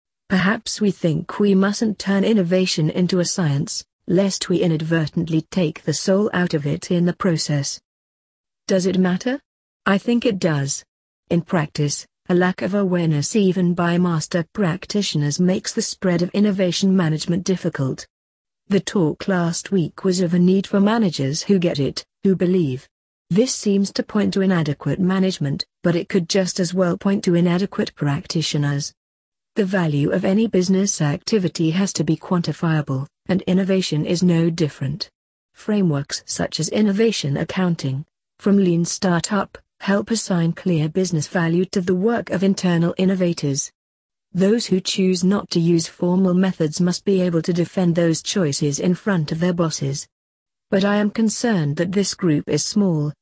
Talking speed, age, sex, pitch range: 160 wpm, 40-59, female, 160-195 Hz